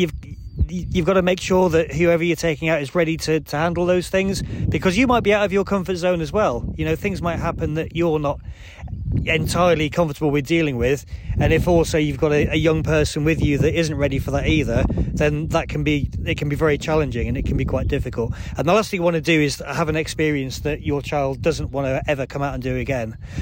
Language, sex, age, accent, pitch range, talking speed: English, male, 30-49, British, 140-175 Hz, 250 wpm